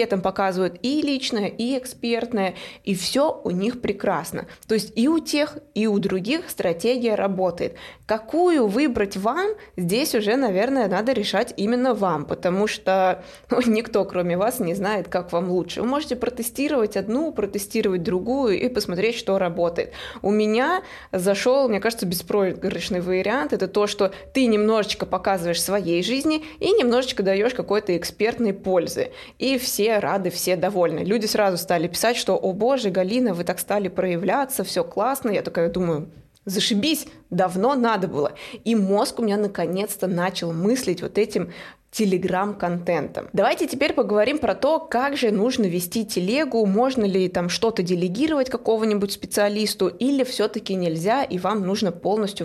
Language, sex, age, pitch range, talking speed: Russian, female, 20-39, 185-245 Hz, 155 wpm